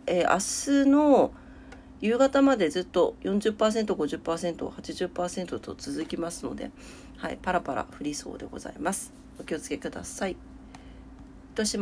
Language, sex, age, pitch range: Japanese, female, 40-59, 155-235 Hz